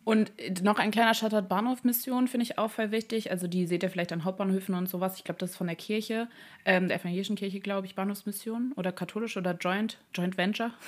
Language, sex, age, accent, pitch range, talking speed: German, female, 20-39, German, 170-190 Hz, 220 wpm